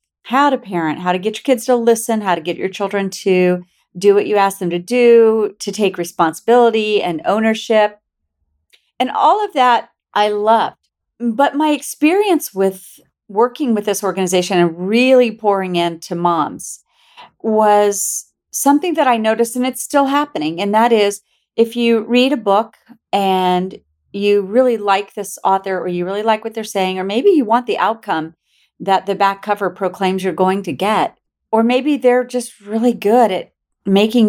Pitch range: 185-240 Hz